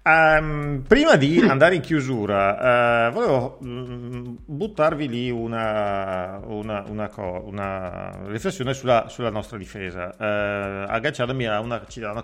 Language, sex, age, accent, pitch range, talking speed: Italian, male, 40-59, native, 95-125 Hz, 125 wpm